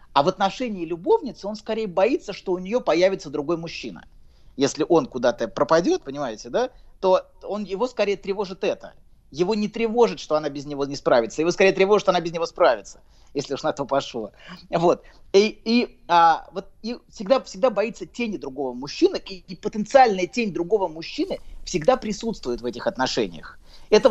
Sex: male